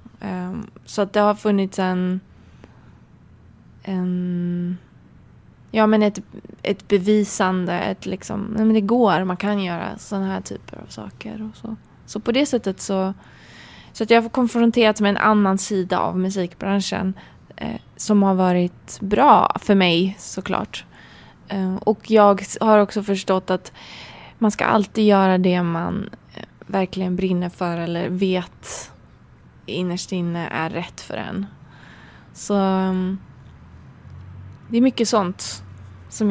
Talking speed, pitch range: 135 wpm, 180-210 Hz